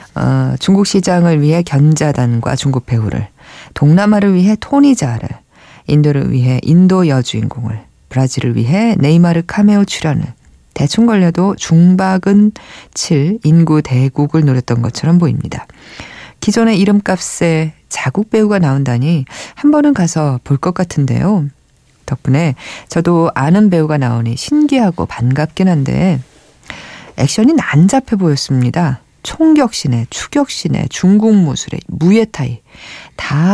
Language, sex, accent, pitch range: Korean, female, native, 135-195 Hz